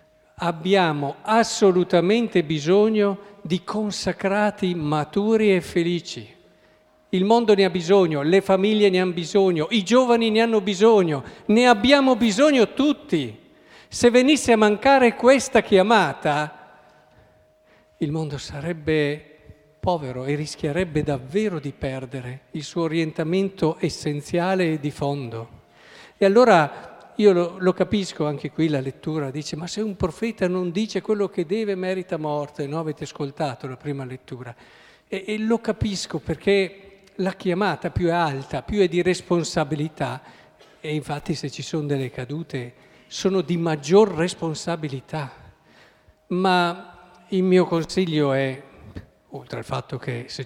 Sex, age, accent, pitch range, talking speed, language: male, 50-69, native, 145-195 Hz, 135 wpm, Italian